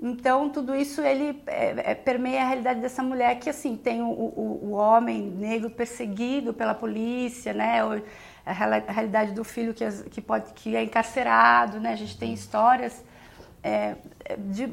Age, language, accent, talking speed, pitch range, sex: 30-49, Portuguese, Brazilian, 170 wpm, 220-260 Hz, female